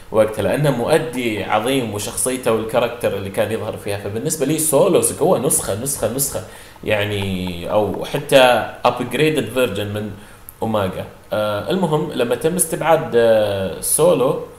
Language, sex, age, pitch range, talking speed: Arabic, male, 30-49, 110-155 Hz, 115 wpm